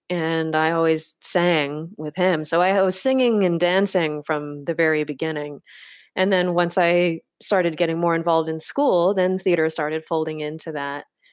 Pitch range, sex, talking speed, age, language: 160-200 Hz, female, 170 wpm, 20-39, English